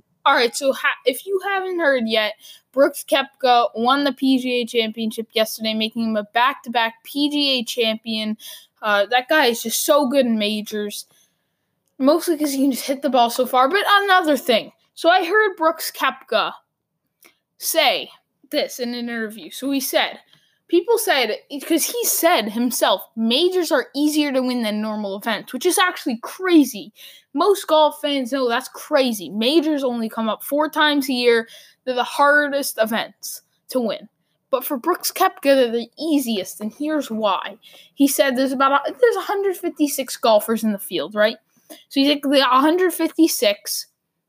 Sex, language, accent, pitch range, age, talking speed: female, English, American, 230-310 Hz, 10-29, 165 wpm